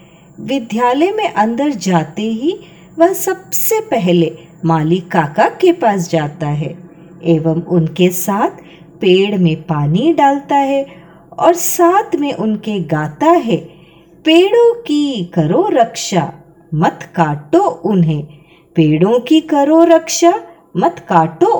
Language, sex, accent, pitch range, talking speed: Hindi, female, native, 165-270 Hz, 115 wpm